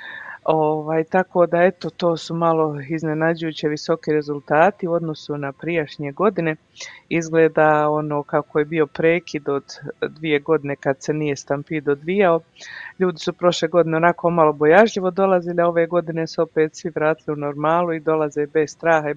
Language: Croatian